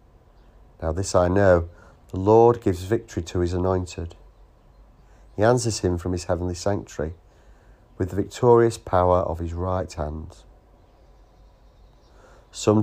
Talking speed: 125 wpm